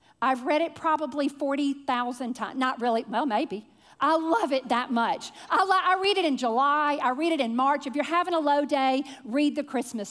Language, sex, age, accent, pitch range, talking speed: English, female, 50-69, American, 260-370 Hz, 210 wpm